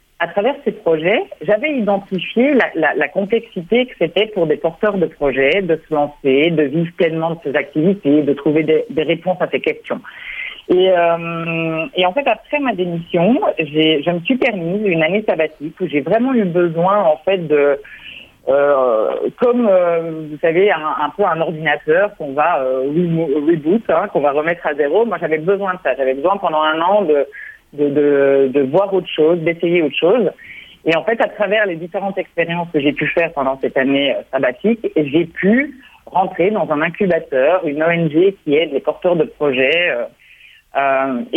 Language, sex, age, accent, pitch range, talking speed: French, female, 50-69, French, 155-210 Hz, 185 wpm